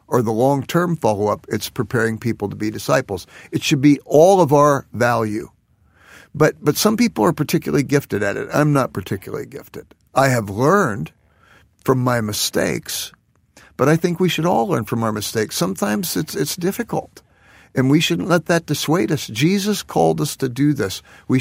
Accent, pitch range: American, 115-155 Hz